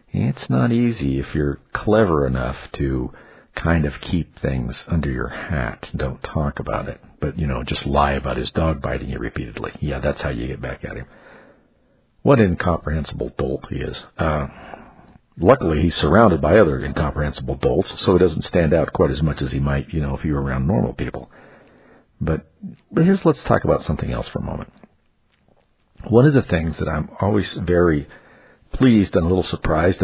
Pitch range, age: 70-90 Hz, 50-69